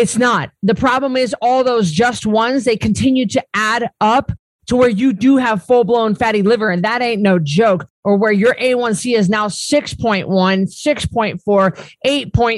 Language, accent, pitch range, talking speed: English, American, 205-255 Hz, 165 wpm